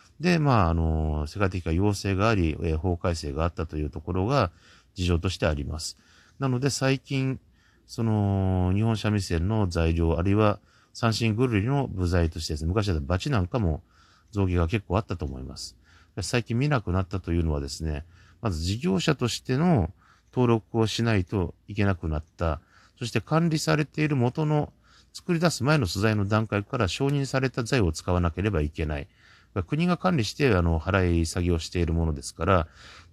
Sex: male